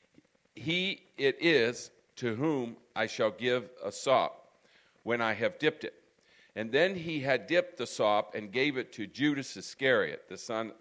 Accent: American